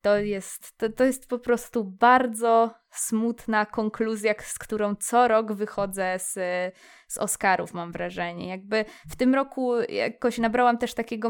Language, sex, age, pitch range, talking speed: Polish, female, 20-39, 200-235 Hz, 140 wpm